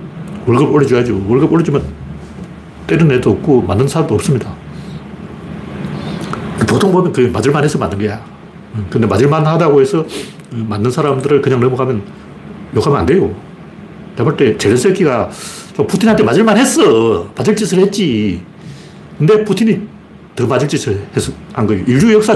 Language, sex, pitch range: Korean, male, 125-195 Hz